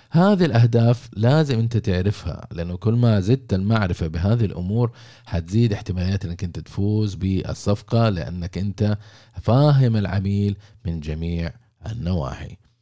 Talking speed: 115 wpm